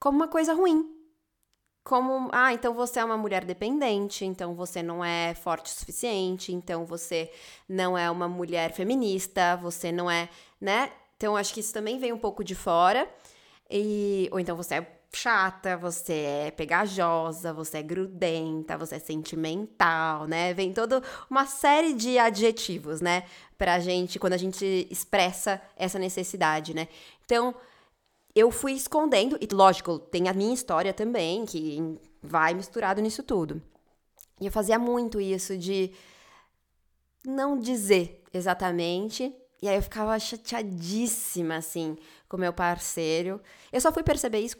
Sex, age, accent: female, 20-39, Brazilian